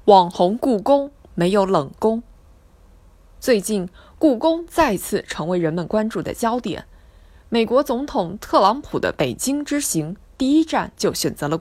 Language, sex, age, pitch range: Chinese, female, 20-39, 165-255 Hz